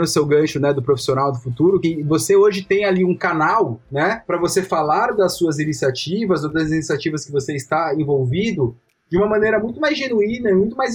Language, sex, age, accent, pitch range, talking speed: Portuguese, male, 20-39, Brazilian, 165-210 Hz, 210 wpm